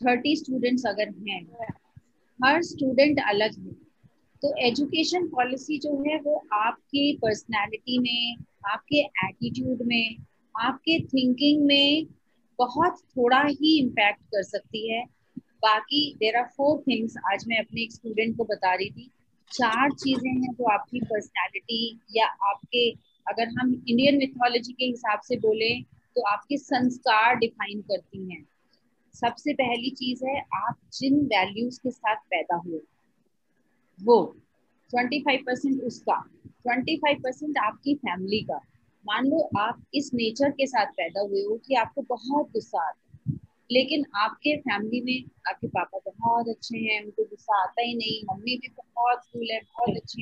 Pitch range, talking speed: 220-280 Hz, 150 wpm